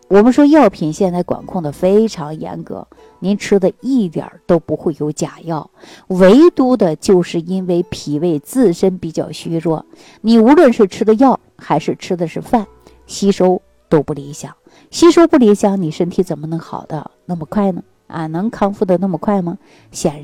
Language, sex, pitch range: Chinese, female, 160-210 Hz